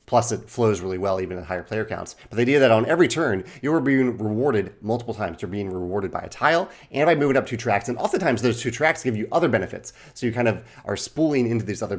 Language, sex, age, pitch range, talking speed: English, male, 30-49, 100-125 Hz, 265 wpm